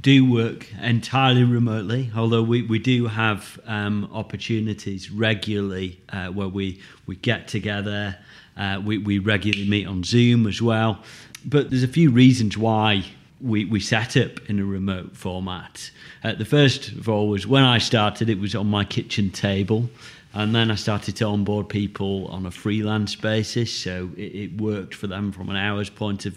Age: 40-59